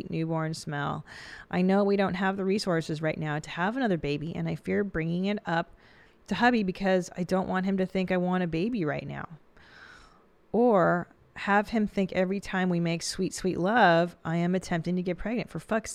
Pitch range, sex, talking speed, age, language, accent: 170-220 Hz, female, 205 wpm, 30-49, English, American